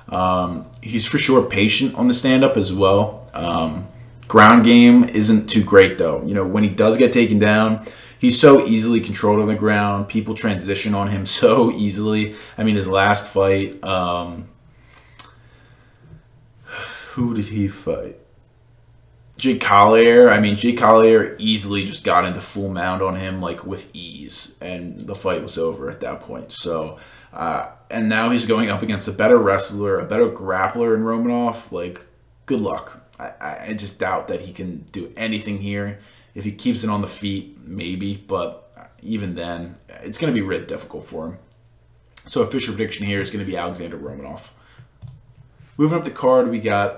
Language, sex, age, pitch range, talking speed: English, male, 20-39, 100-120 Hz, 175 wpm